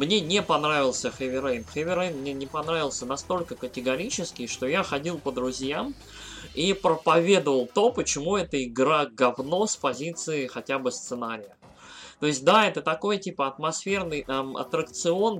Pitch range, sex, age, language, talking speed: 130-180 Hz, male, 20-39, Russian, 145 wpm